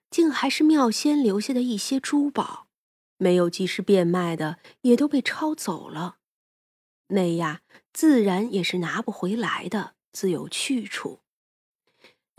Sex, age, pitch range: female, 20-39, 185-250 Hz